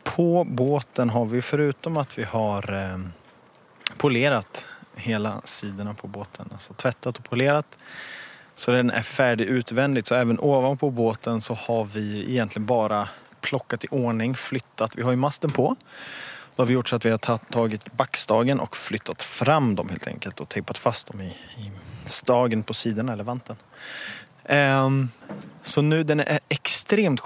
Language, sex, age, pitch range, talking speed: Swedish, male, 20-39, 110-135 Hz, 155 wpm